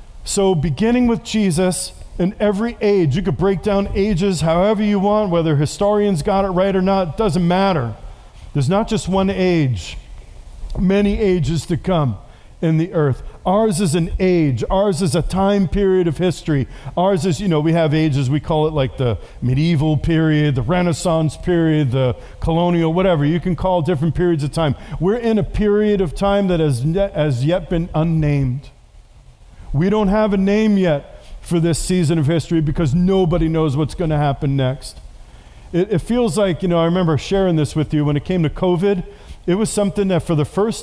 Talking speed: 190 wpm